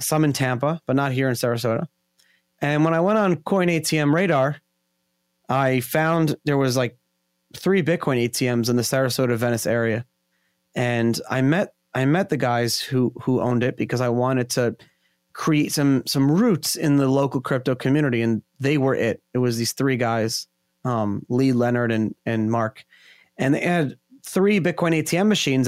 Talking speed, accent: 175 wpm, American